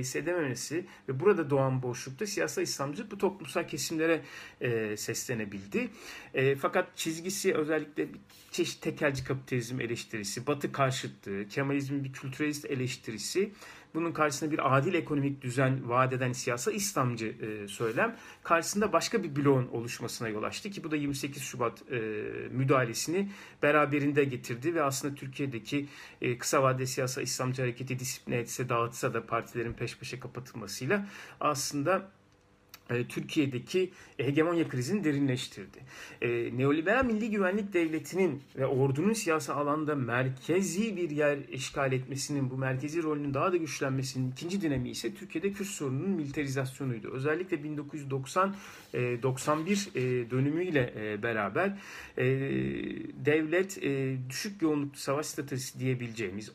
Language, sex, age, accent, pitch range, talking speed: Turkish, male, 40-59, native, 125-160 Hz, 115 wpm